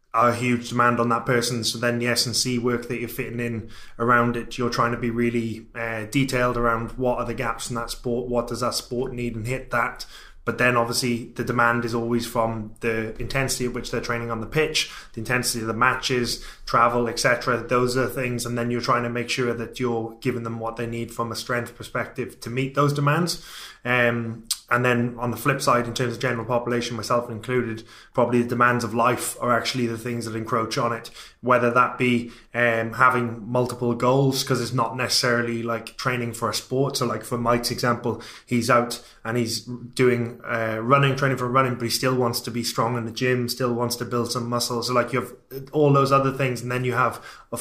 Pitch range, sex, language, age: 120-130 Hz, male, English, 20-39